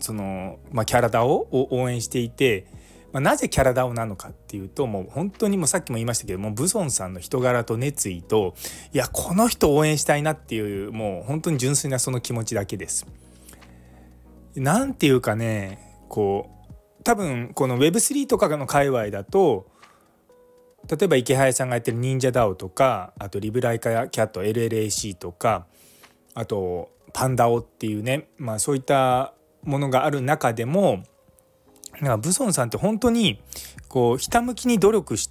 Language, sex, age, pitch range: Japanese, male, 20-39, 105-165 Hz